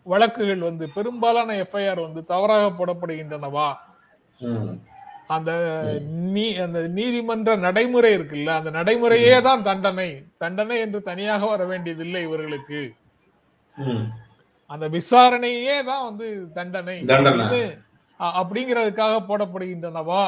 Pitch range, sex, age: 150-195 Hz, male, 30-49